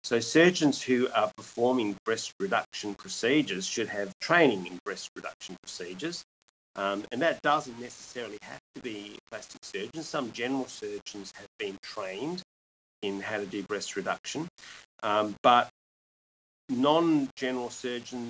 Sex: male